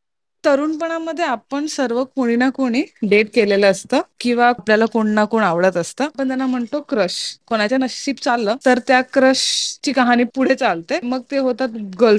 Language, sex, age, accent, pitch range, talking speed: Marathi, female, 20-39, native, 225-275 Hz, 165 wpm